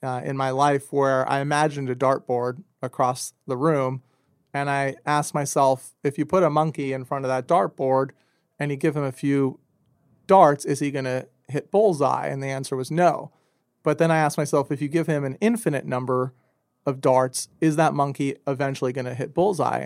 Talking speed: 200 wpm